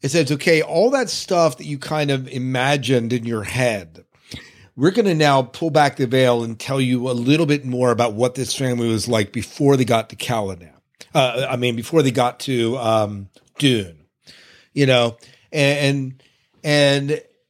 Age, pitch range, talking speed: 40-59, 120-145 Hz, 180 wpm